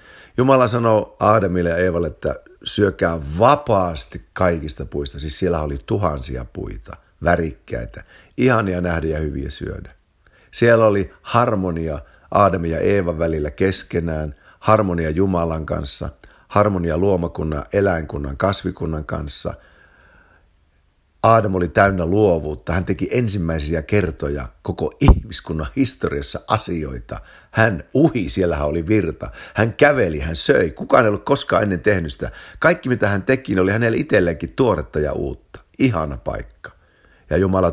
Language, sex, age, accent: Finnish, male, 50-69, native